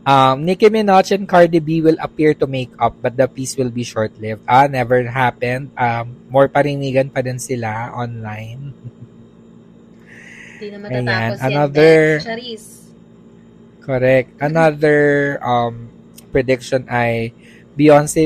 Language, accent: Filipino, native